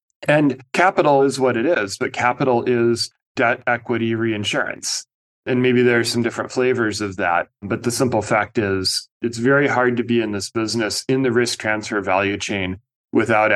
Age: 30-49